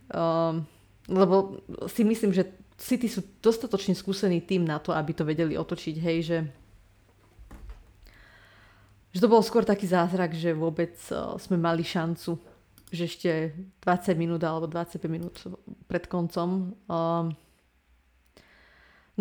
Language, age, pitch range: Slovak, 30-49, 165-195 Hz